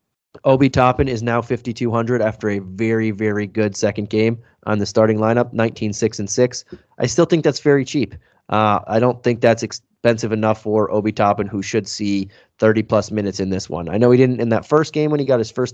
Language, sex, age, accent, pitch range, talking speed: English, male, 20-39, American, 105-120 Hz, 215 wpm